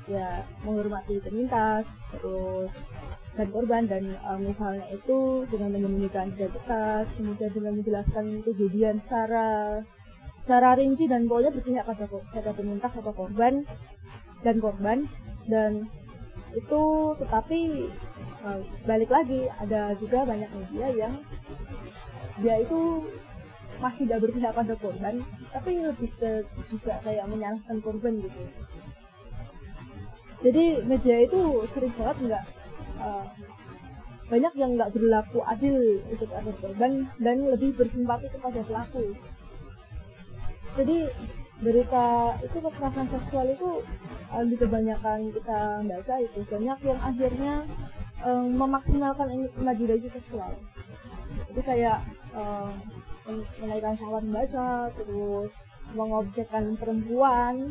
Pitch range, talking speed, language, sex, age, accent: 215-255 Hz, 105 wpm, Indonesian, female, 20-39, native